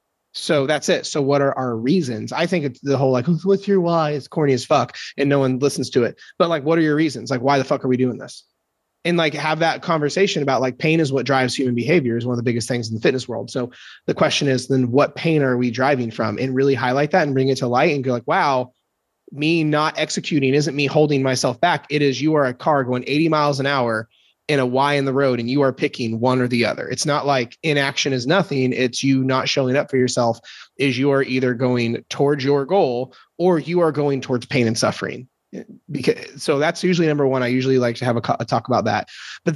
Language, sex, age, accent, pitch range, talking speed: English, male, 30-49, American, 125-155 Hz, 250 wpm